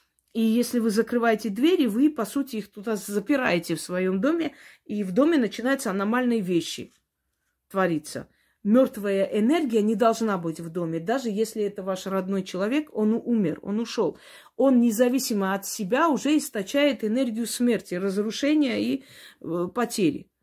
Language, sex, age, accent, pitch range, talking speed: Russian, female, 40-59, native, 195-250 Hz, 145 wpm